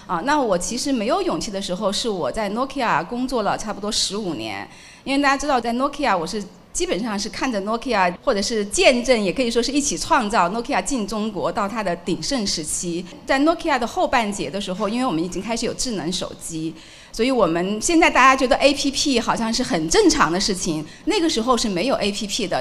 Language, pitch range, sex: Chinese, 200-275 Hz, female